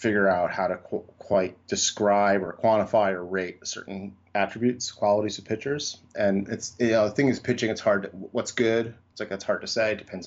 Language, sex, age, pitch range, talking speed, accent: English, male, 30-49, 95-115 Hz, 215 wpm, American